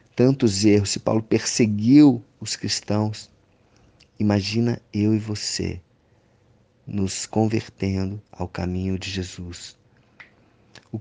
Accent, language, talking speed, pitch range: Brazilian, Portuguese, 100 wpm, 100-120 Hz